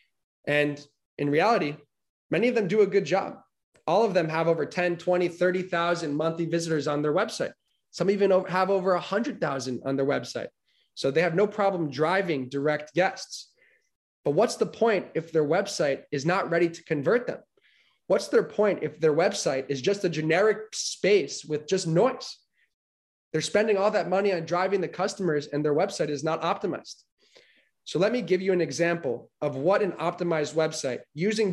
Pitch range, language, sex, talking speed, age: 145-190 Hz, English, male, 185 wpm, 20-39